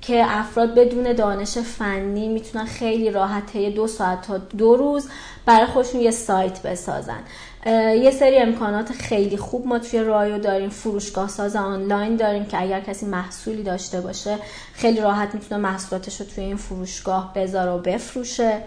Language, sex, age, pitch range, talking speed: Persian, female, 30-49, 190-225 Hz, 150 wpm